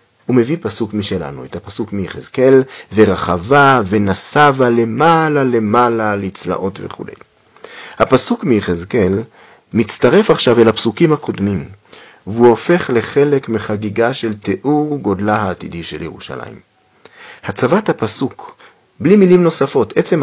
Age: 40-59